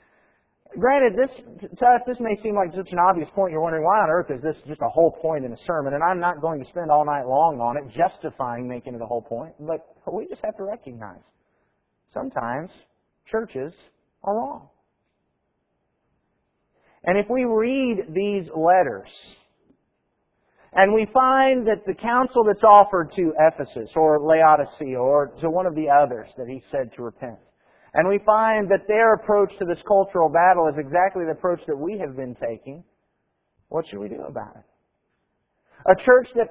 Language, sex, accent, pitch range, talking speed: English, male, American, 160-220 Hz, 180 wpm